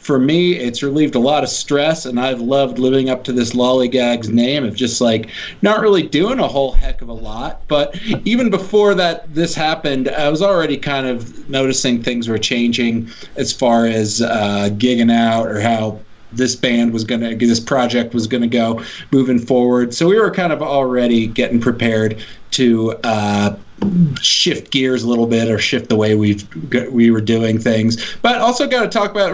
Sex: male